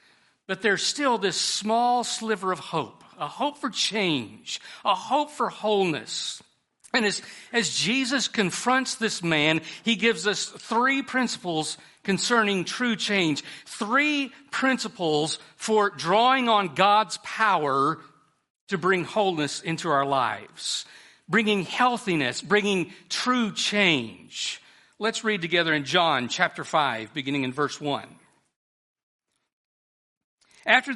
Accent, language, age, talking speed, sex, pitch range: American, English, 50-69, 120 wpm, male, 160-225 Hz